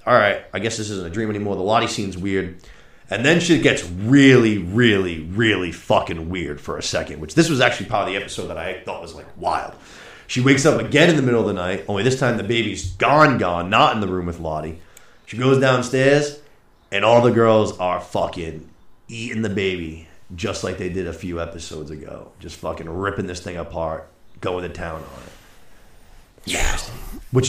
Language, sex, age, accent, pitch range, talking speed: English, male, 30-49, American, 90-125 Hz, 205 wpm